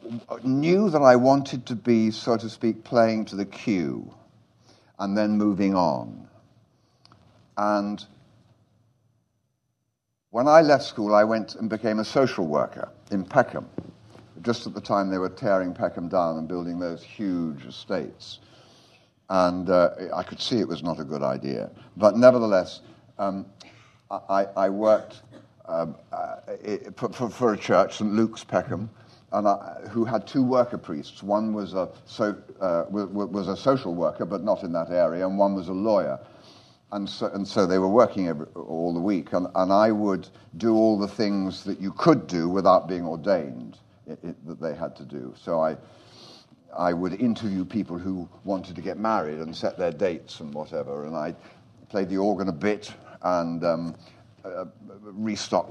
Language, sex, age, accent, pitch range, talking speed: English, male, 60-79, British, 95-115 Hz, 170 wpm